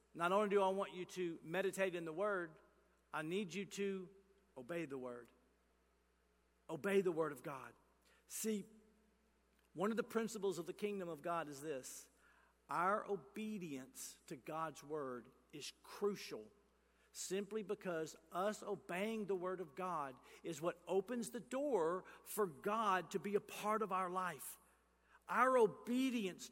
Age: 50-69